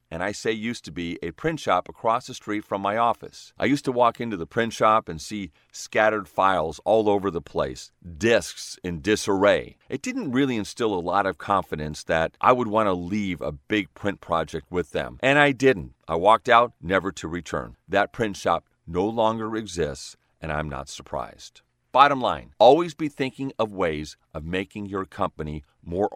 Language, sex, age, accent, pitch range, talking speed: English, male, 40-59, American, 85-110 Hz, 195 wpm